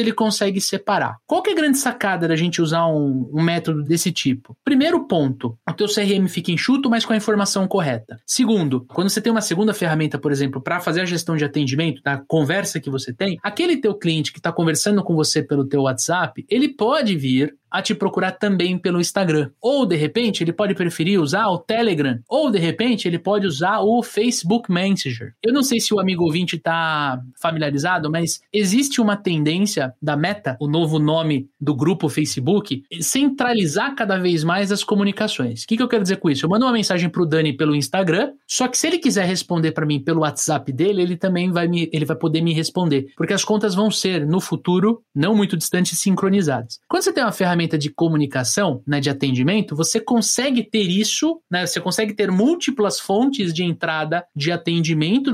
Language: Portuguese